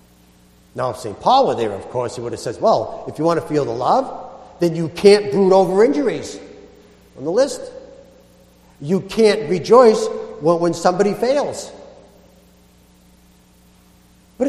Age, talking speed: 60-79, 150 wpm